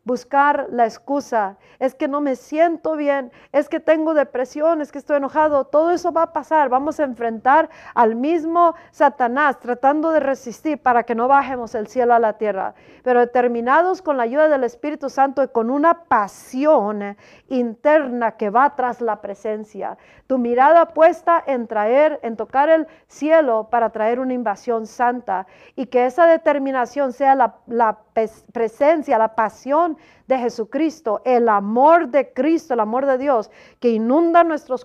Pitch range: 225-290 Hz